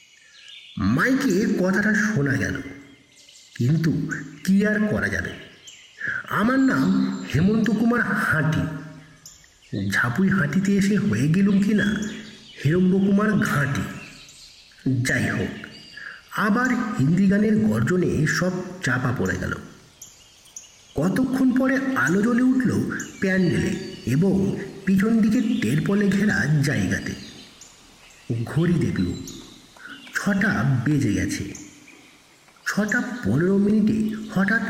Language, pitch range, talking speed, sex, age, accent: Bengali, 165-235 Hz, 90 wpm, male, 60-79, native